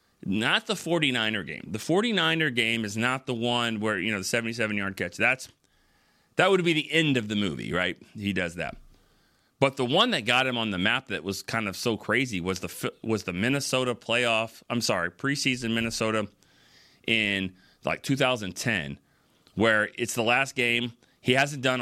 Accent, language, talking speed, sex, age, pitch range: American, English, 180 wpm, male, 30-49, 105-130 Hz